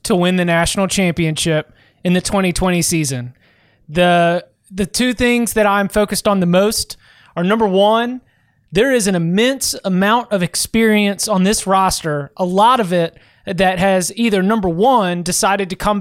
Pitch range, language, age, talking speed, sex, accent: 180-220 Hz, English, 20-39, 165 wpm, male, American